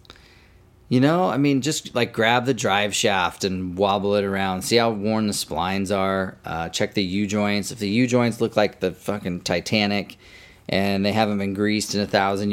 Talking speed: 190 wpm